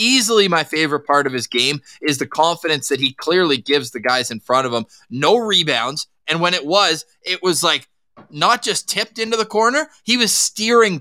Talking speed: 205 wpm